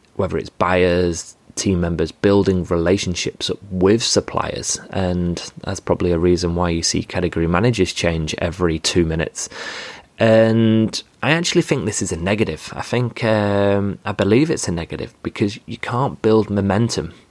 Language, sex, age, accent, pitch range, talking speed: English, male, 20-39, British, 90-110 Hz, 155 wpm